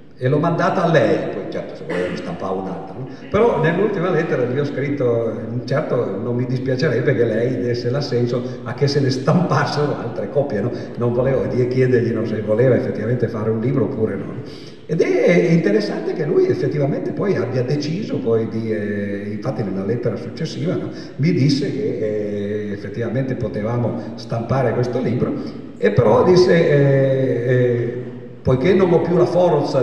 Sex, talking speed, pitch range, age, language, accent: male, 170 wpm, 120-145 Hz, 50-69, Italian, native